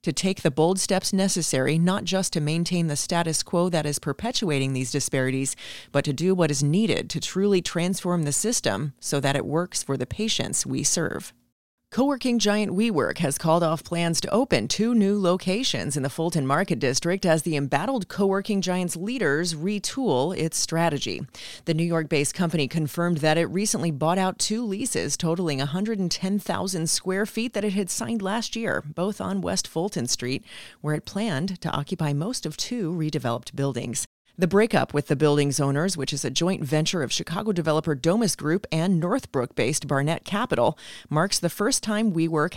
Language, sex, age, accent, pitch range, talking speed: English, female, 30-49, American, 150-200 Hz, 180 wpm